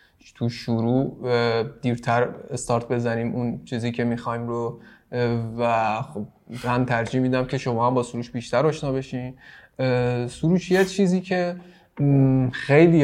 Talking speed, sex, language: 130 wpm, male, Persian